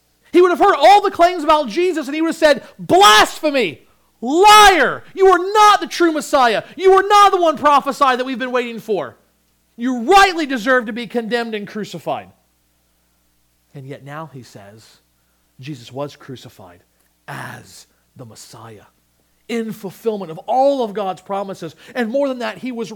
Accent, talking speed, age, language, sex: American, 170 wpm, 40-59, English, male